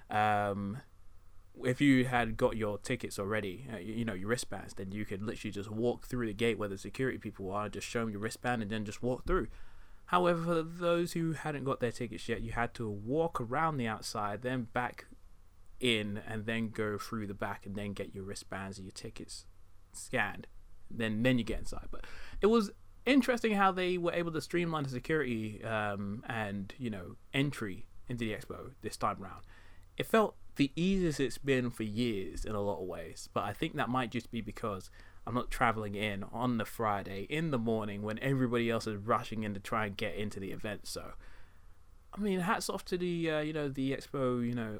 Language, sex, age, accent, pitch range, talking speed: English, male, 20-39, British, 100-130 Hz, 210 wpm